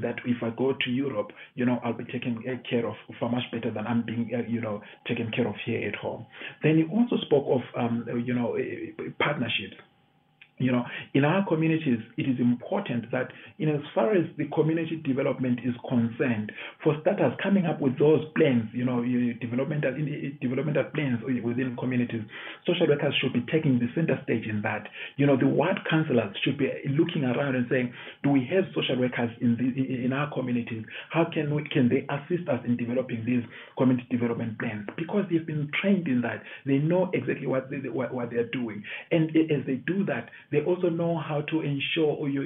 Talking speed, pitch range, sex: 195 wpm, 120-155 Hz, male